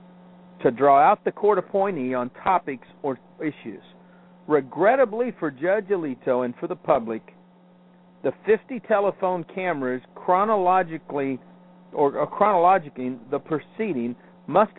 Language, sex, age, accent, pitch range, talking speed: English, male, 50-69, American, 140-180 Hz, 115 wpm